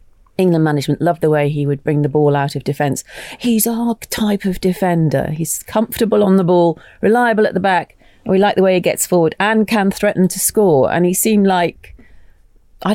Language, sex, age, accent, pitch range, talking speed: English, female, 40-59, British, 160-210 Hz, 205 wpm